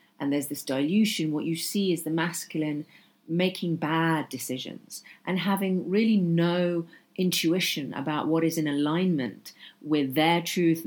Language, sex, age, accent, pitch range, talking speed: English, female, 40-59, British, 145-175 Hz, 145 wpm